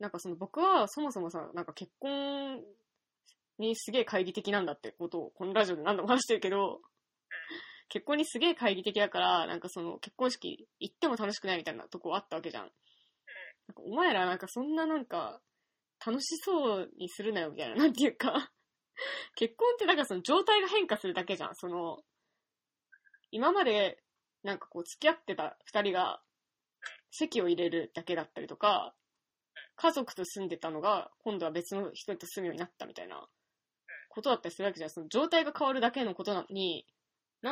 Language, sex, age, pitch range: Japanese, female, 20-39, 180-270 Hz